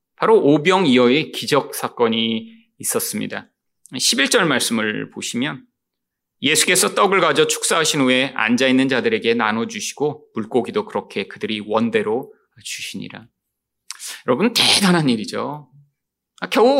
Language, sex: Korean, male